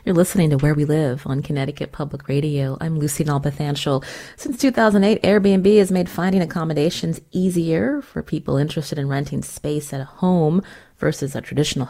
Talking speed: 165 wpm